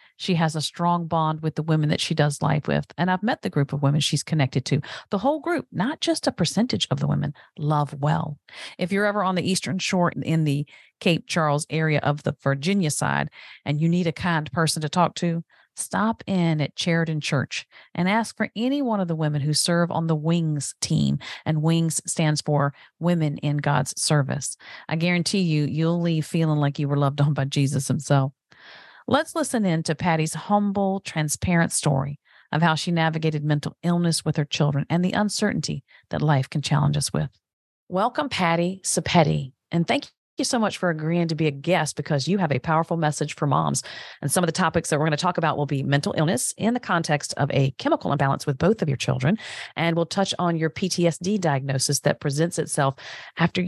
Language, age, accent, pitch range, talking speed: English, 40-59, American, 145-175 Hz, 210 wpm